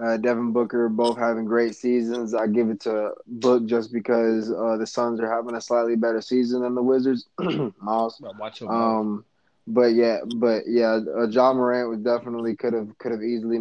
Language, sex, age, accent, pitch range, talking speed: English, male, 20-39, American, 110-120 Hz, 185 wpm